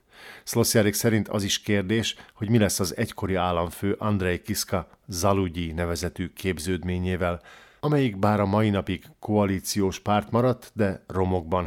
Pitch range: 90-110 Hz